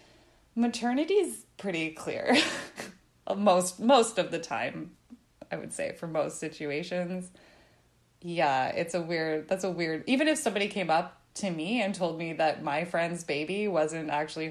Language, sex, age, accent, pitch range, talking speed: English, female, 20-39, American, 160-215 Hz, 155 wpm